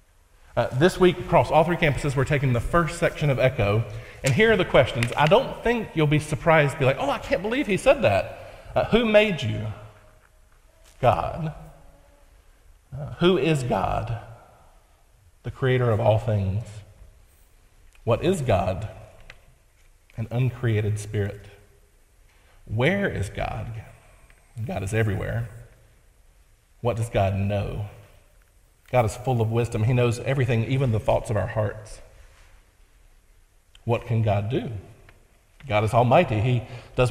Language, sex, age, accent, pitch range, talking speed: English, male, 40-59, American, 100-125 Hz, 140 wpm